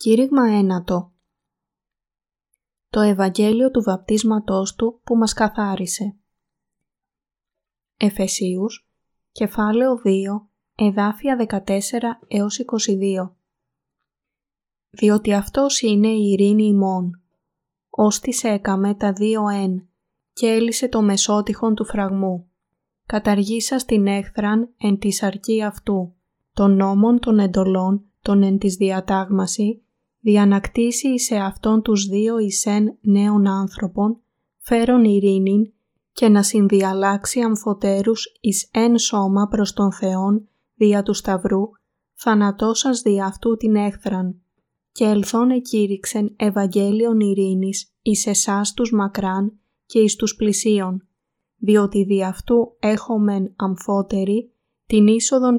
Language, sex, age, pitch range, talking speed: Greek, female, 20-39, 195-220 Hz, 105 wpm